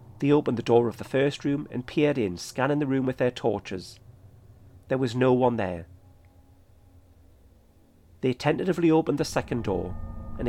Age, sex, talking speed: 40-59, male, 165 wpm